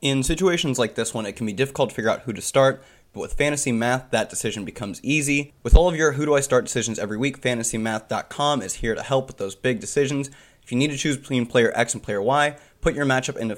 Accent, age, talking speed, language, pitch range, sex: American, 20-39, 255 wpm, English, 115-140 Hz, male